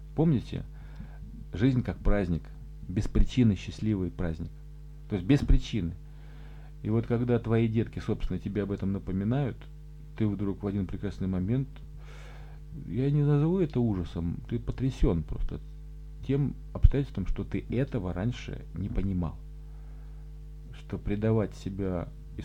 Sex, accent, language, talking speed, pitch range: male, native, Russian, 130 wpm, 95-135 Hz